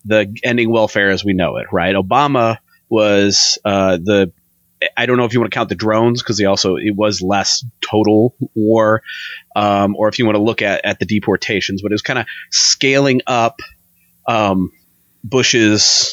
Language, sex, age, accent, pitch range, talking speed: English, male, 30-49, American, 100-135 Hz, 185 wpm